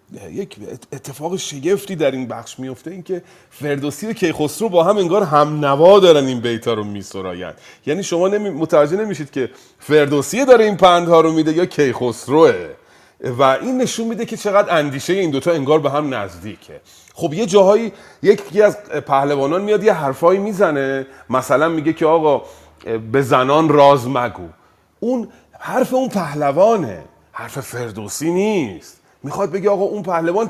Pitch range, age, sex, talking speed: 120-190 Hz, 30-49, male, 150 wpm